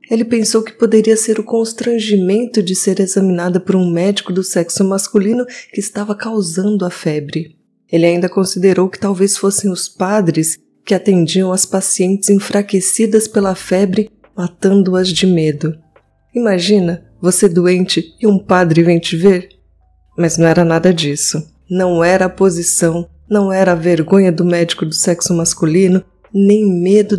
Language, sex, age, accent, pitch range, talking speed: Portuguese, female, 20-39, Brazilian, 170-200 Hz, 150 wpm